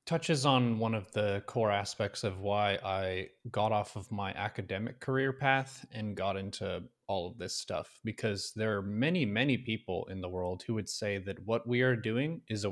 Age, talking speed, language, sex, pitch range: 20-39, 205 wpm, English, male, 100-125 Hz